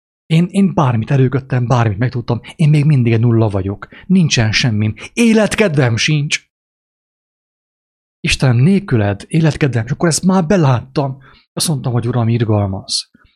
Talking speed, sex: 125 wpm, male